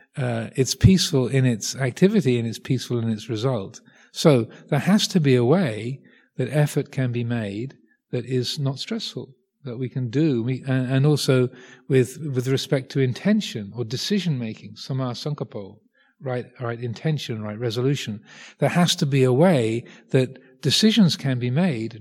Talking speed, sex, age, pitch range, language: 170 wpm, male, 40-59, 120-145 Hz, English